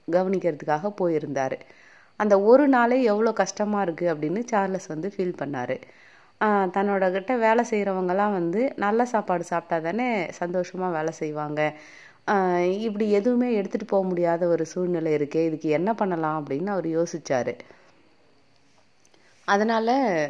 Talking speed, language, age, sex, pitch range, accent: 120 wpm, Tamil, 30-49, female, 165-220 Hz, native